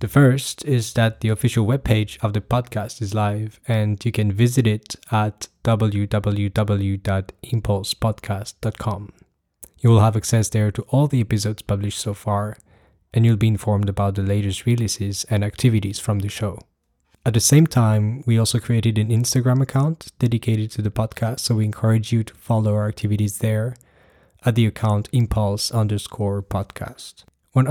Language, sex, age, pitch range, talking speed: English, male, 20-39, 105-120 Hz, 160 wpm